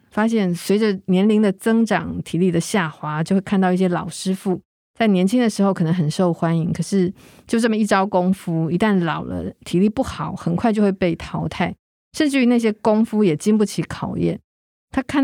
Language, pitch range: Chinese, 175-225 Hz